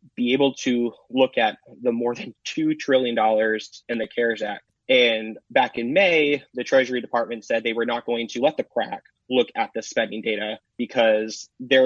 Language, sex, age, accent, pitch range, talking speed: English, male, 20-39, American, 110-135 Hz, 185 wpm